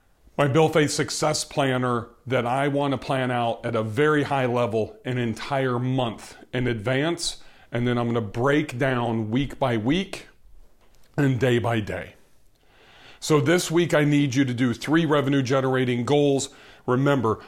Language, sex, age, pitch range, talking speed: English, male, 40-59, 120-145 Hz, 165 wpm